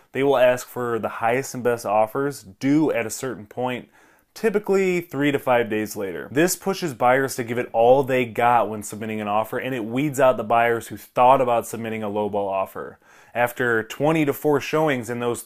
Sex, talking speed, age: male, 205 wpm, 20-39